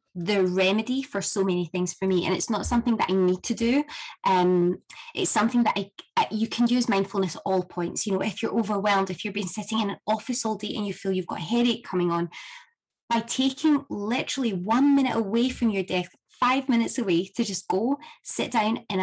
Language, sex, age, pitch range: English, female, 20-39, 185-235 Hz